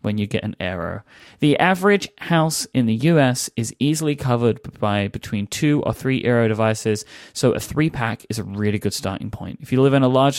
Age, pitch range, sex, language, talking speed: 30-49, 110-150 Hz, male, English, 210 wpm